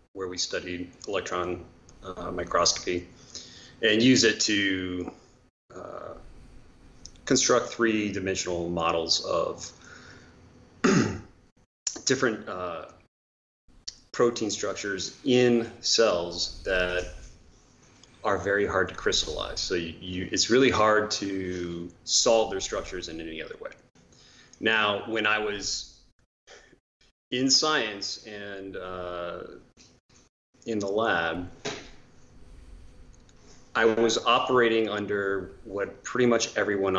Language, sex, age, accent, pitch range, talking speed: English, male, 30-49, American, 90-115 Hz, 95 wpm